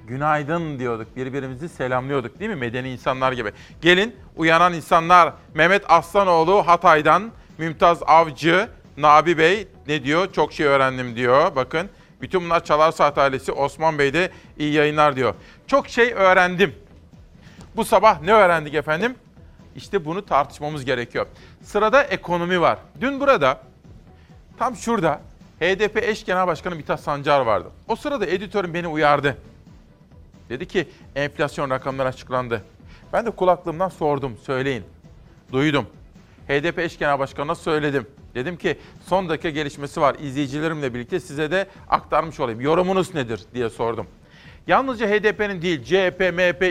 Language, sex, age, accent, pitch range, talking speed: Turkish, male, 40-59, native, 140-180 Hz, 130 wpm